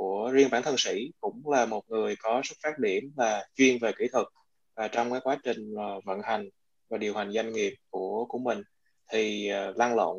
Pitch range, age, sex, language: 110-140 Hz, 20-39, male, Vietnamese